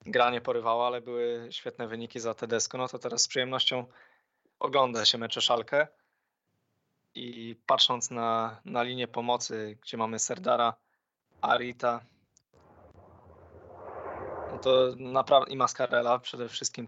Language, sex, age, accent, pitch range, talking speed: Polish, male, 20-39, native, 115-130 Hz, 130 wpm